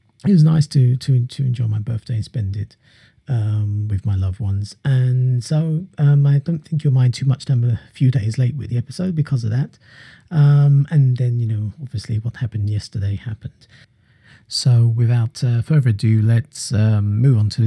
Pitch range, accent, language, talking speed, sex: 110-135 Hz, British, English, 200 wpm, male